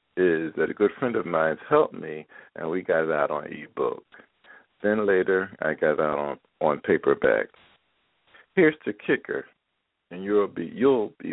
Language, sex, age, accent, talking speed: English, male, 50-69, American, 170 wpm